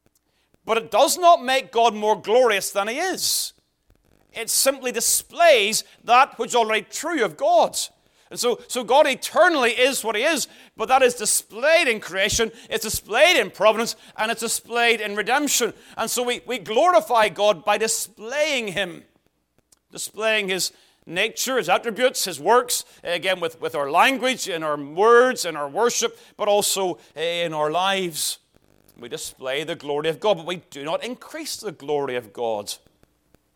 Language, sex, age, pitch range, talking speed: English, male, 40-59, 175-250 Hz, 165 wpm